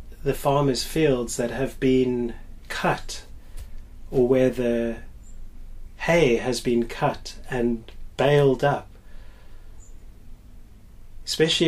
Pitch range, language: 105-130 Hz, English